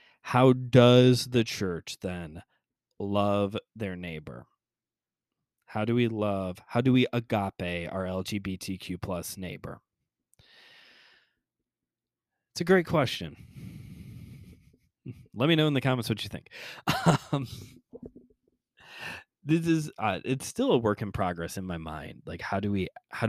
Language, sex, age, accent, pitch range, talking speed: English, male, 20-39, American, 95-140 Hz, 130 wpm